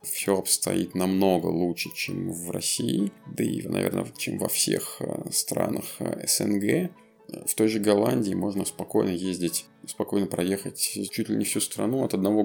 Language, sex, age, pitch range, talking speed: Russian, male, 20-39, 90-105 Hz, 150 wpm